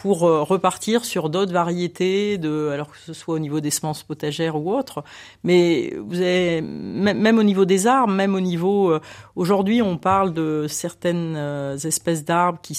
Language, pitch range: French, 150-195 Hz